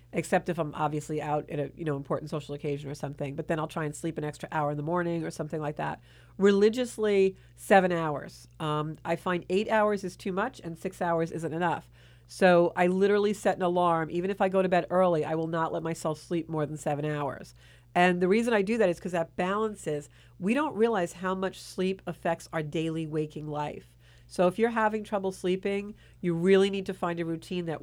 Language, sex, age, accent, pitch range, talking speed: English, female, 40-59, American, 150-185 Hz, 225 wpm